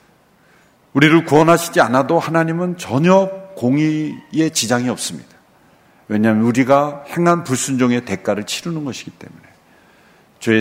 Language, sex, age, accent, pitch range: Korean, male, 50-69, native, 115-170 Hz